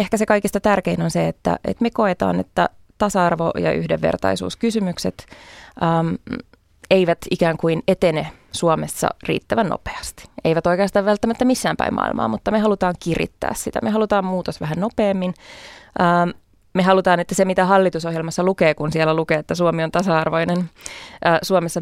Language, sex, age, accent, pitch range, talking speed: Finnish, female, 20-39, native, 155-190 Hz, 145 wpm